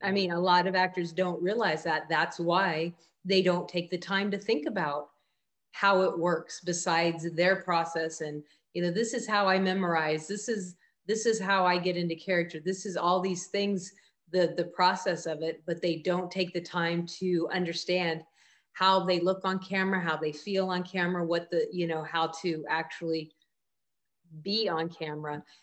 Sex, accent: female, American